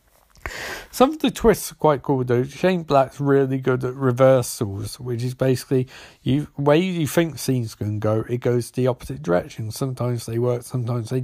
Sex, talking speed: male, 180 wpm